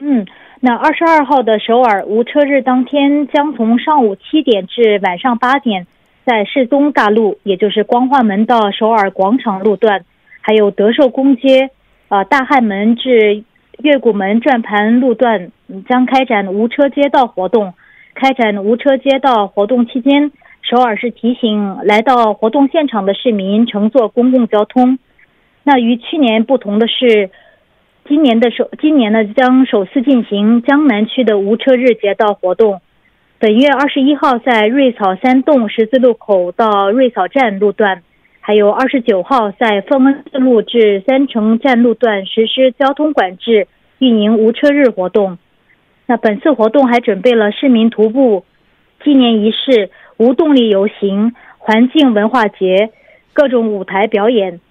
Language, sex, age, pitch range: Korean, female, 30-49, 210-265 Hz